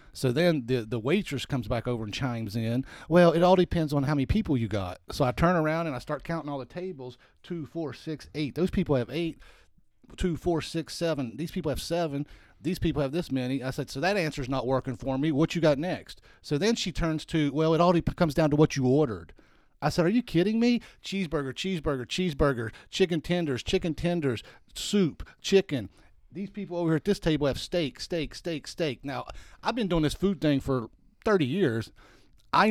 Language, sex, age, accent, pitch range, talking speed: English, male, 40-59, American, 130-170 Hz, 215 wpm